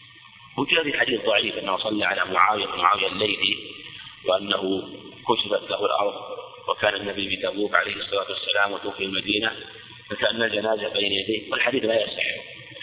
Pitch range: 105-120 Hz